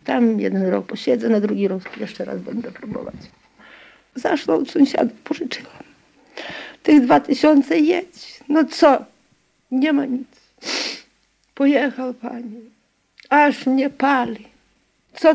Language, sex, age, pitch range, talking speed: Polish, female, 50-69, 235-295 Hz, 115 wpm